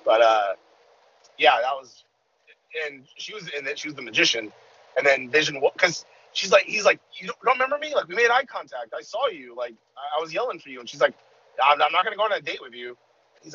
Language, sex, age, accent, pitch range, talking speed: English, male, 30-49, American, 135-200 Hz, 245 wpm